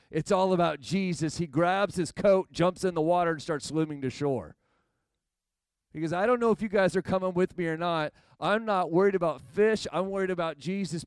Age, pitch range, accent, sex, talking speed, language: 40-59, 170-205 Hz, American, male, 215 wpm, English